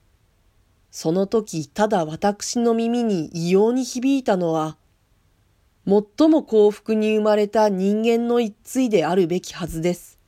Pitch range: 140-220 Hz